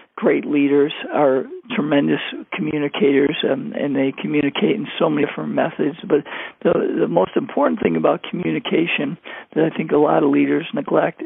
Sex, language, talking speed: male, English, 160 wpm